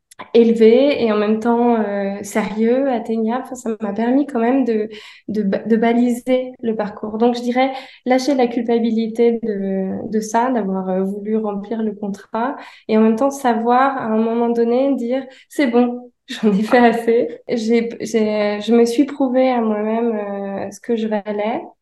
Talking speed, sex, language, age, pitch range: 180 wpm, female, French, 20-39, 210-245 Hz